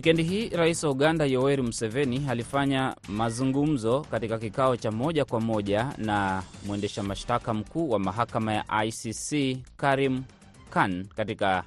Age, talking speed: 20-39, 125 wpm